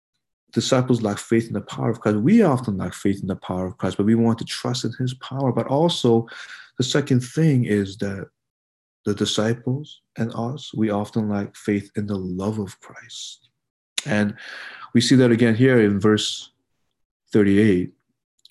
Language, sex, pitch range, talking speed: English, male, 110-165 Hz, 175 wpm